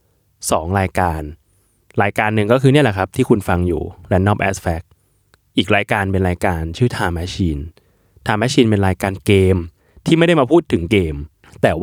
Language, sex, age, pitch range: Thai, male, 20-39, 90-105 Hz